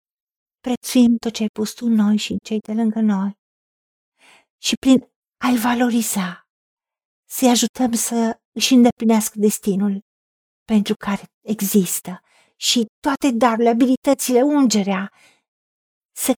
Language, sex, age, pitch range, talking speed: Romanian, female, 50-69, 200-250 Hz, 120 wpm